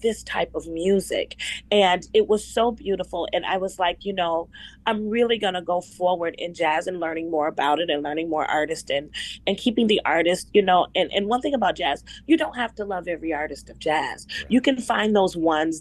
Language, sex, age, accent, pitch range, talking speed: English, female, 30-49, American, 165-200 Hz, 225 wpm